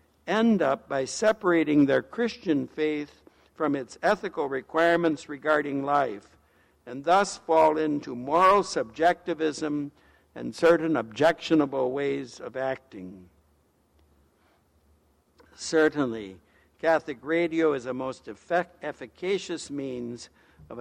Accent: American